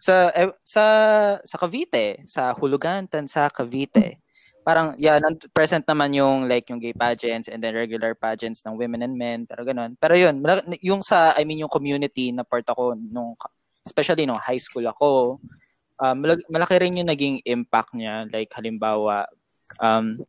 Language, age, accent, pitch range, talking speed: Filipino, 20-39, native, 125-175 Hz, 170 wpm